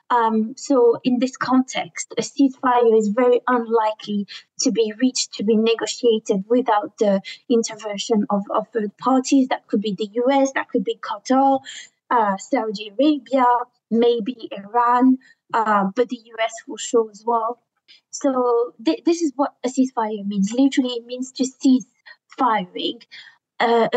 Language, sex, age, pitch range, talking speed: English, female, 20-39, 225-265 Hz, 150 wpm